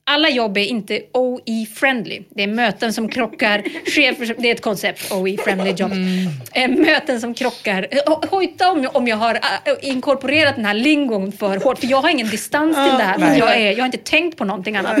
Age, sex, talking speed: 30-49, female, 190 wpm